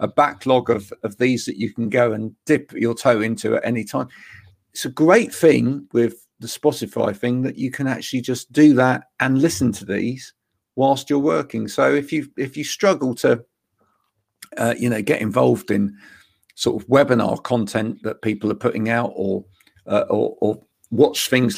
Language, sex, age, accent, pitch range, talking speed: English, male, 50-69, British, 110-135 Hz, 185 wpm